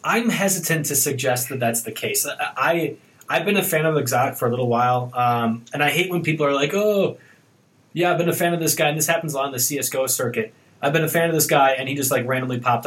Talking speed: 275 wpm